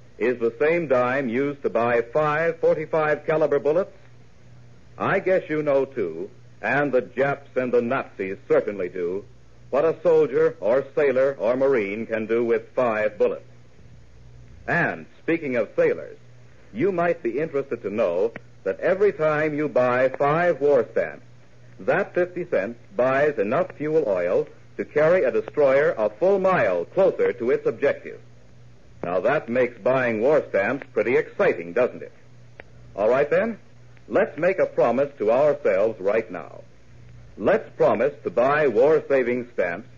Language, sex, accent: English, male, American